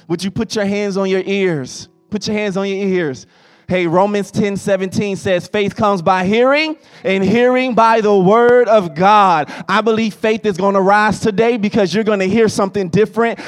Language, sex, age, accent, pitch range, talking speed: English, male, 20-39, American, 180-215 Hz, 200 wpm